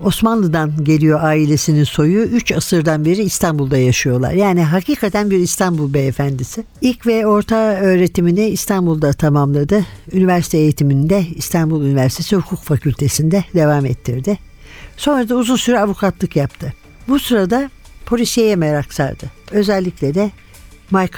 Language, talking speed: Turkish, 120 wpm